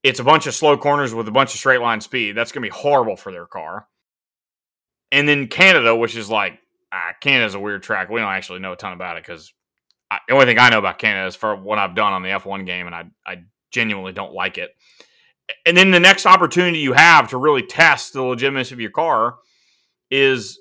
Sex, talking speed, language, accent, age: male, 235 wpm, English, American, 30-49